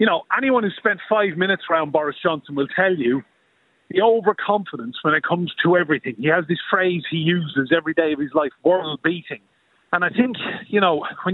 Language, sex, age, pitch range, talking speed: English, male, 30-49, 160-200 Hz, 205 wpm